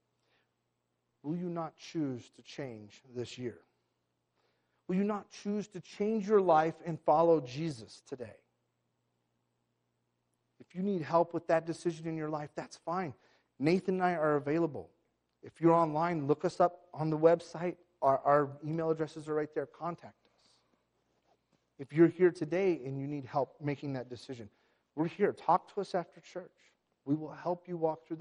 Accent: American